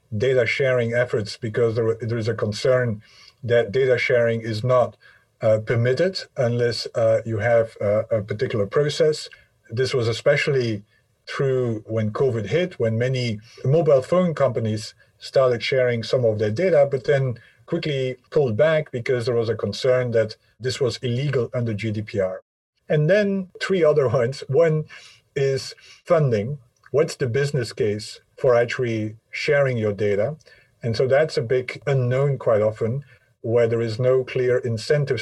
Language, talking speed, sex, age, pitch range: English, 150 wpm, male, 50-69, 115-135 Hz